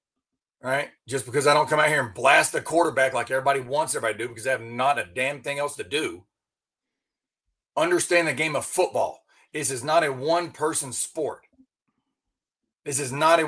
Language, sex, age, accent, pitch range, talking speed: English, male, 30-49, American, 150-195 Hz, 190 wpm